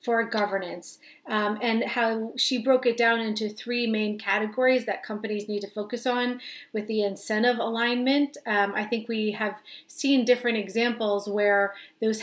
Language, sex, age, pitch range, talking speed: English, female, 30-49, 205-245 Hz, 160 wpm